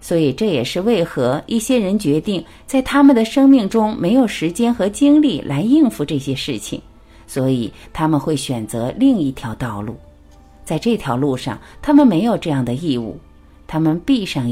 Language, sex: Chinese, female